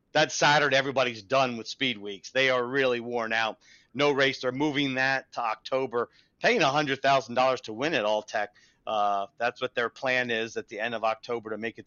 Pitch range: 115-135 Hz